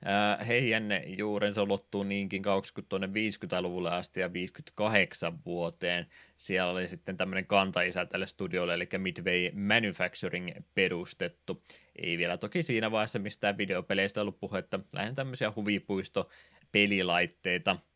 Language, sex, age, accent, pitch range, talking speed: Finnish, male, 20-39, native, 90-105 Hz, 115 wpm